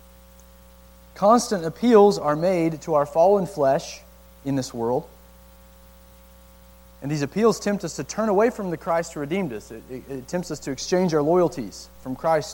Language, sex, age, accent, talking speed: English, male, 30-49, American, 170 wpm